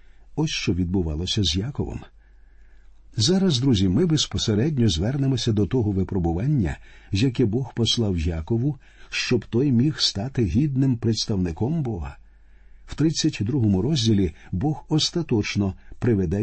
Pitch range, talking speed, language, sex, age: 95-130 Hz, 110 wpm, Ukrainian, male, 50-69